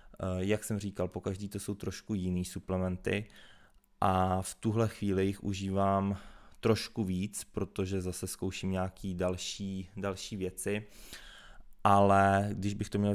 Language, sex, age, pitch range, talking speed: Czech, male, 20-39, 90-100 Hz, 130 wpm